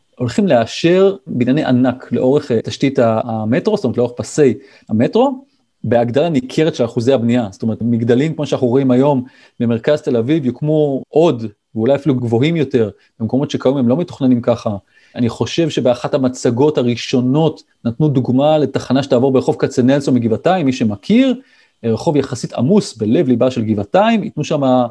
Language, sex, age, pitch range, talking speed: Hebrew, male, 30-49, 120-160 Hz, 145 wpm